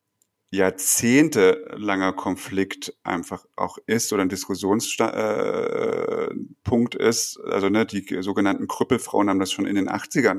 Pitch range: 95-110 Hz